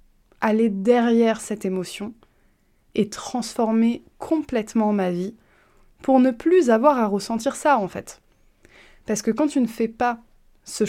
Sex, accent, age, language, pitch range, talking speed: female, French, 20-39, French, 205-240 Hz, 145 wpm